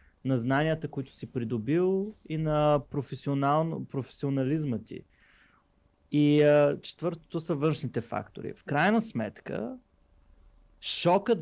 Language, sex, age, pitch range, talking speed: Bulgarian, male, 20-39, 125-155 Hz, 100 wpm